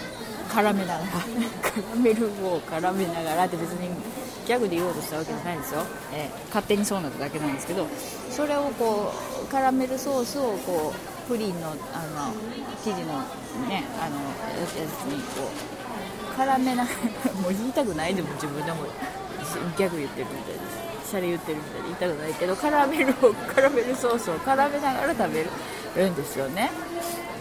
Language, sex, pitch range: Japanese, female, 185-275 Hz